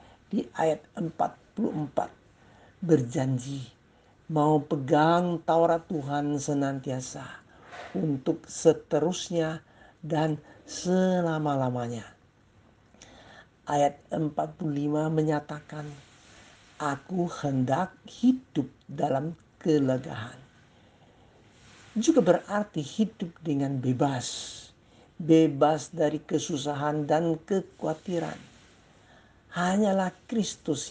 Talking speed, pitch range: 65 wpm, 135-170 Hz